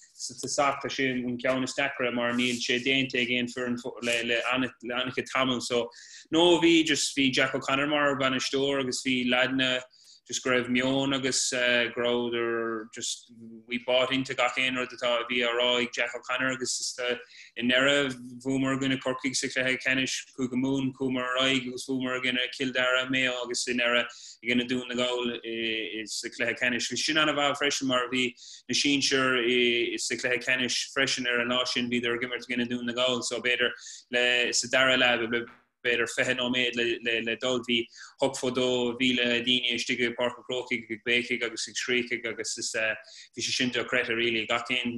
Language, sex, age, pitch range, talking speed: English, male, 20-39, 120-130 Hz, 175 wpm